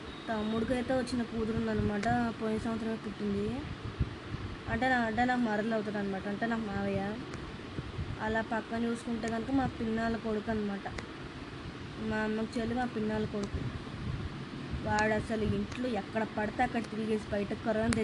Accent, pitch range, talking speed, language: native, 215-235 Hz, 135 wpm, Telugu